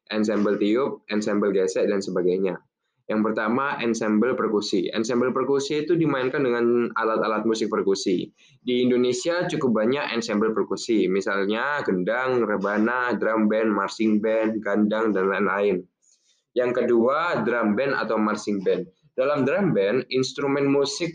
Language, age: Indonesian, 10-29